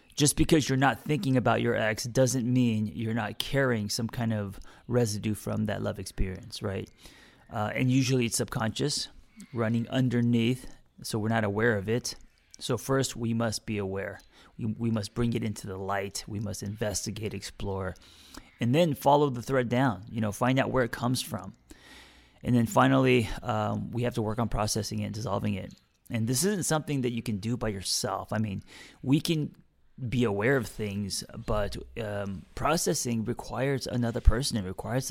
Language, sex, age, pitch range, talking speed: English, male, 30-49, 100-125 Hz, 185 wpm